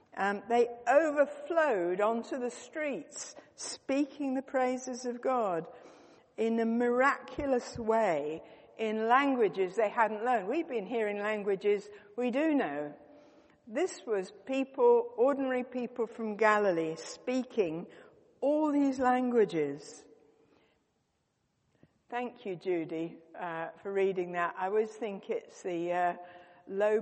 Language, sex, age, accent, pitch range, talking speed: English, female, 60-79, British, 180-250 Hz, 115 wpm